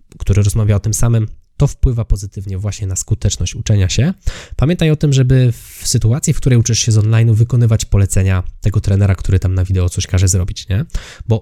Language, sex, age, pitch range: Polish, male, 20-39, 100-120 Hz